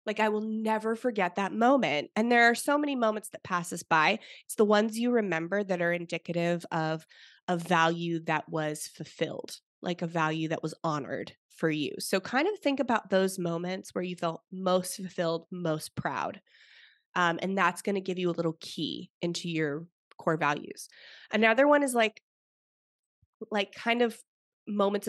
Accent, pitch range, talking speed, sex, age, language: American, 170-220 Hz, 180 wpm, female, 20-39, English